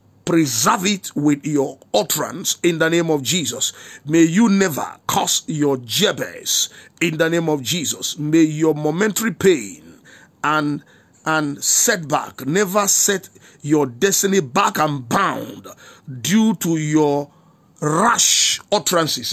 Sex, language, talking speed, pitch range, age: male, English, 125 wpm, 135-165 Hz, 50-69